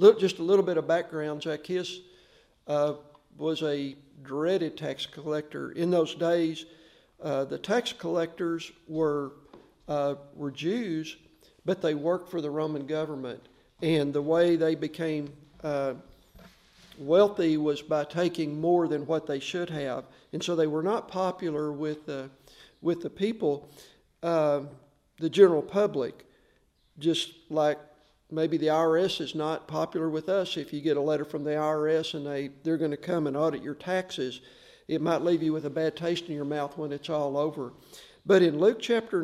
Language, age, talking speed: English, 50-69, 165 wpm